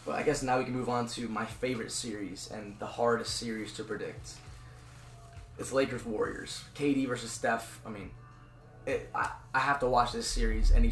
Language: English